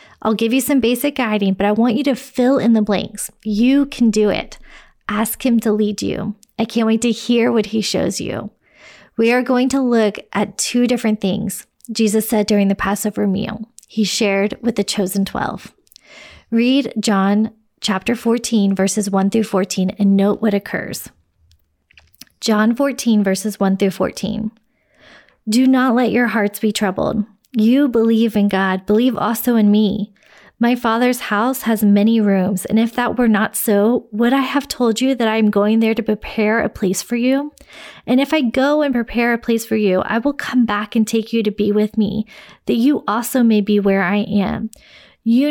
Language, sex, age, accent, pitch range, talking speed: English, female, 20-39, American, 205-240 Hz, 190 wpm